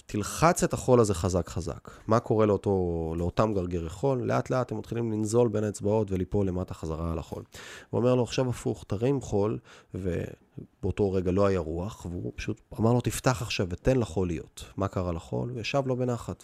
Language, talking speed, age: Hebrew, 185 wpm, 30-49